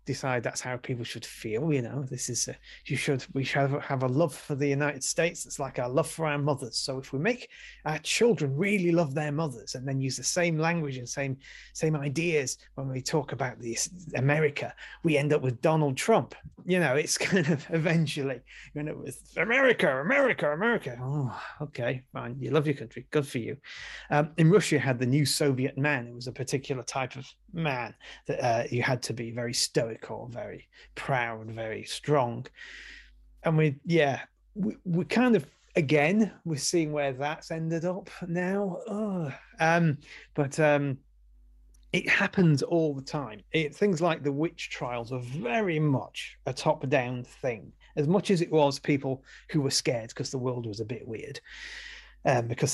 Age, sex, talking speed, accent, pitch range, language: 30-49, male, 190 wpm, British, 125-160 Hz, English